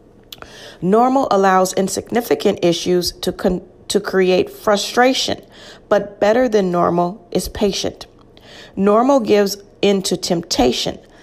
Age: 40-59